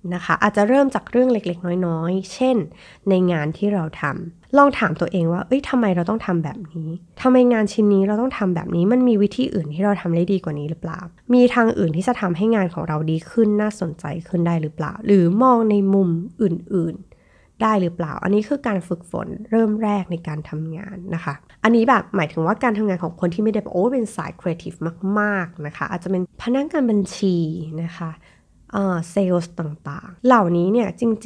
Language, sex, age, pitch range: Thai, female, 20-39, 165-215 Hz